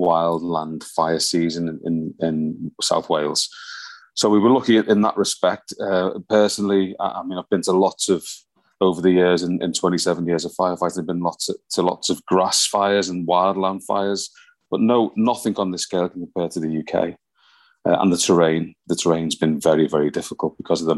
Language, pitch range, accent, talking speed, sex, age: English, 85-95 Hz, British, 205 wpm, male, 30-49